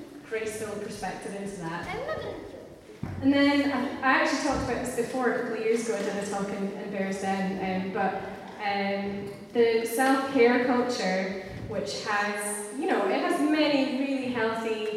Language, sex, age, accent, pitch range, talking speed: English, female, 10-29, British, 205-255 Hz, 150 wpm